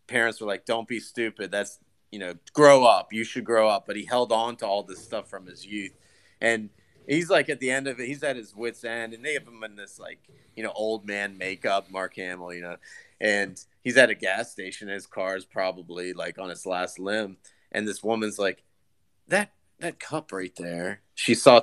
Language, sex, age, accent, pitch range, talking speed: English, male, 30-49, American, 95-120 Hz, 230 wpm